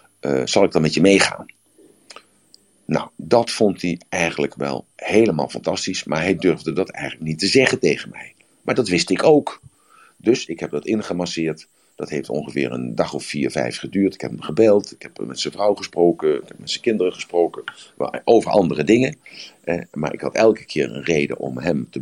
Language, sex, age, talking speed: Dutch, male, 50-69, 200 wpm